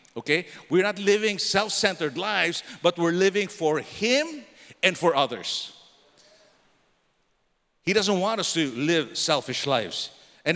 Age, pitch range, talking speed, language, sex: 50-69, 155-200 Hz, 130 wpm, English, male